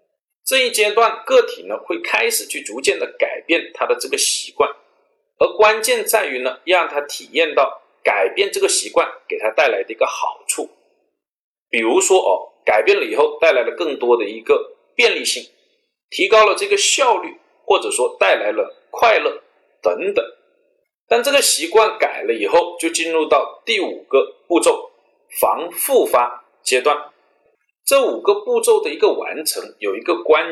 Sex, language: male, Chinese